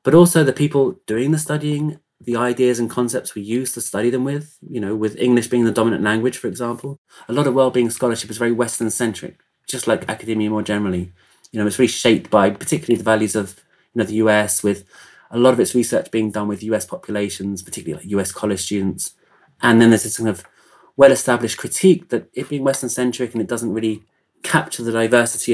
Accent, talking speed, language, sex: British, 215 wpm, English, male